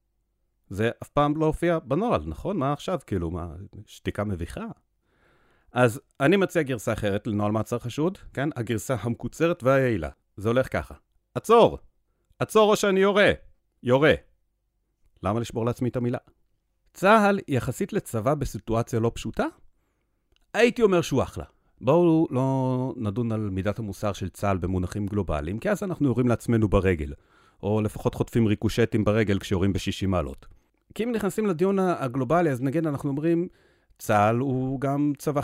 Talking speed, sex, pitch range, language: 145 wpm, male, 100-140 Hz, Hebrew